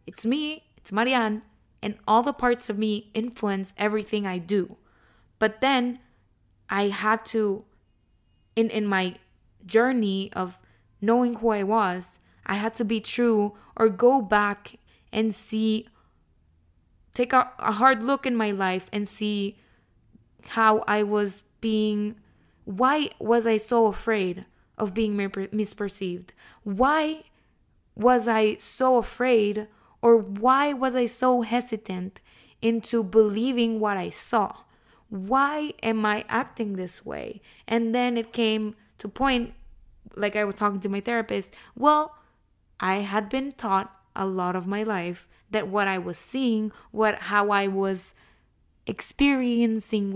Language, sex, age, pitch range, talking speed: Spanish, female, 20-39, 195-230 Hz, 140 wpm